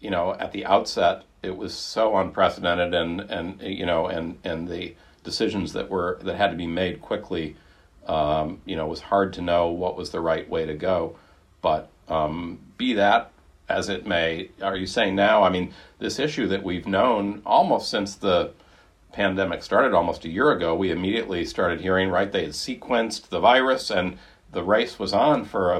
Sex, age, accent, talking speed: male, 50-69, American, 195 wpm